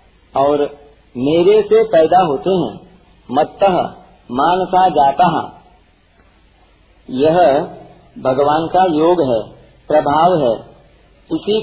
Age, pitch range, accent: 40-59, 135-180 Hz, native